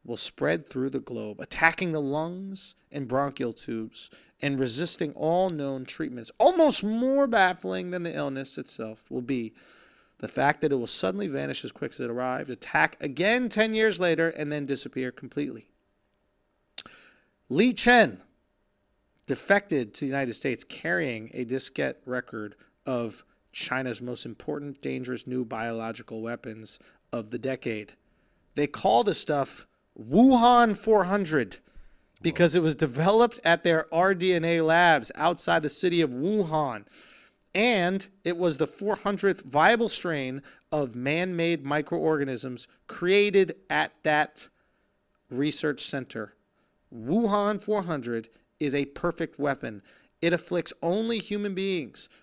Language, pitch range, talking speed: English, 130-185 Hz, 130 wpm